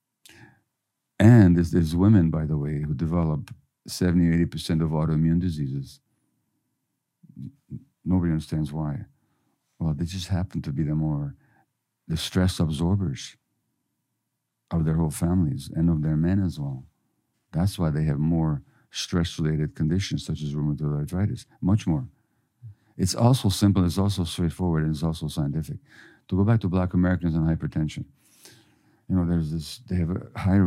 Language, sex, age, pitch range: English, male, 50-69, 80-100 Hz